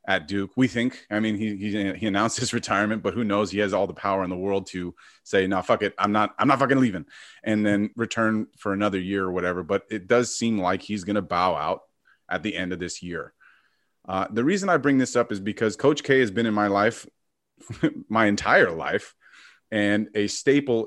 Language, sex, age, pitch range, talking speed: English, male, 30-49, 100-120 Hz, 230 wpm